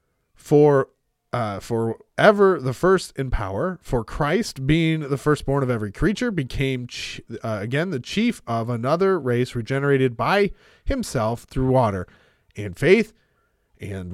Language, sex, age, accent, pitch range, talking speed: English, male, 30-49, American, 120-175 Hz, 140 wpm